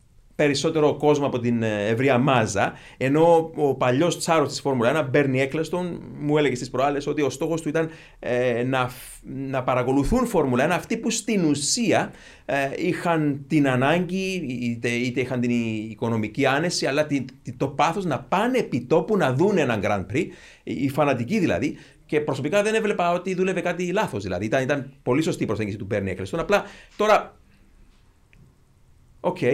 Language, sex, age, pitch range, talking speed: Greek, male, 40-59, 120-165 Hz, 150 wpm